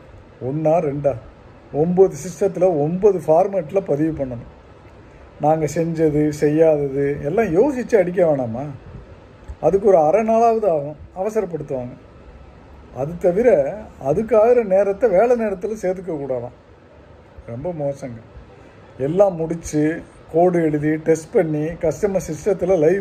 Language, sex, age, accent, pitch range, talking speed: Tamil, male, 50-69, native, 120-185 Hz, 105 wpm